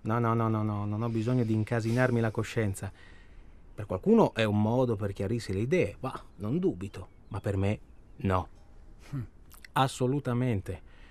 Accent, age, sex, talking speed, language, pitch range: native, 30-49, male, 155 wpm, Italian, 95-125 Hz